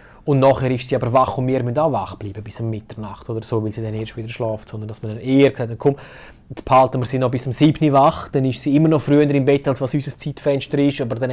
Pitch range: 115-135 Hz